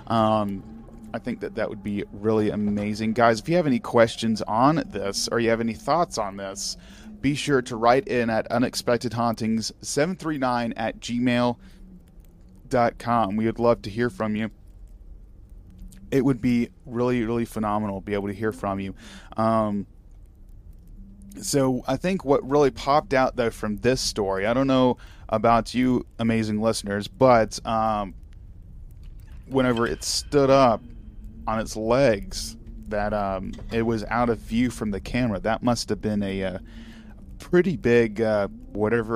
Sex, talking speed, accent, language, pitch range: male, 155 wpm, American, English, 100-120 Hz